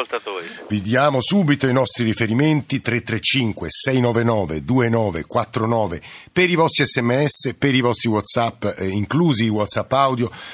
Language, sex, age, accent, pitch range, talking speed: Italian, male, 50-69, native, 105-130 Hz, 115 wpm